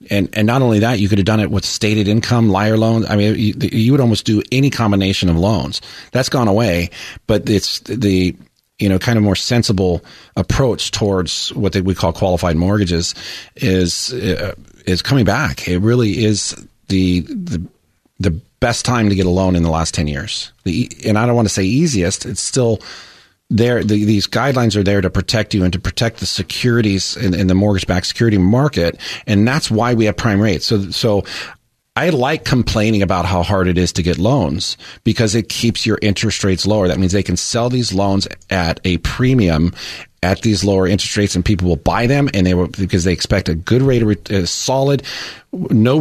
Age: 30-49